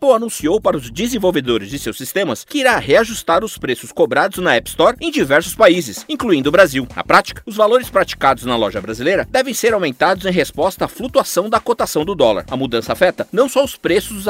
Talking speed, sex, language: 210 wpm, male, Portuguese